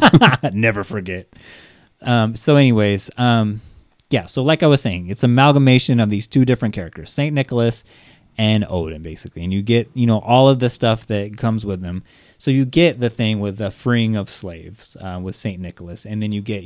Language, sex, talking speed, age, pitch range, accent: English, male, 200 wpm, 30-49, 100-120 Hz, American